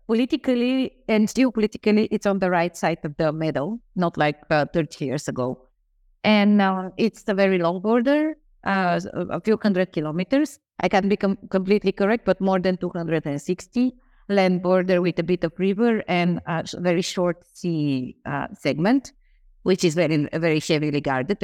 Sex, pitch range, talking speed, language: female, 145-195 Hz, 170 wpm, English